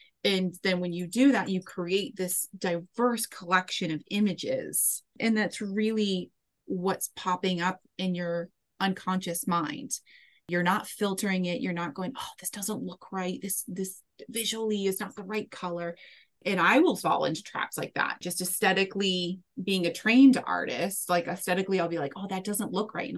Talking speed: 175 wpm